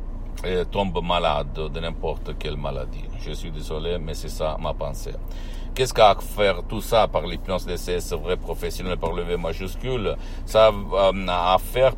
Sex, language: male, Italian